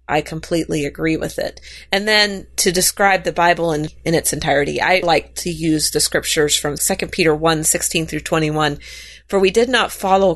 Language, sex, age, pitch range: English, female, 30-49, 155-190 Hz